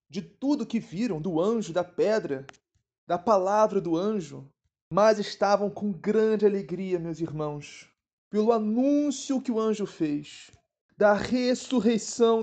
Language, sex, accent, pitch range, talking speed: Portuguese, male, Brazilian, 175-220 Hz, 130 wpm